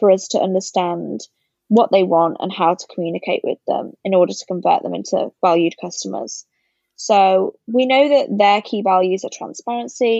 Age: 20-39